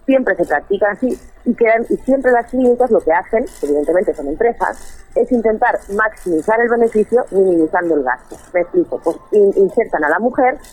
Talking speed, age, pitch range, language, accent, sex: 180 wpm, 30-49, 185-255 Hz, Spanish, Spanish, female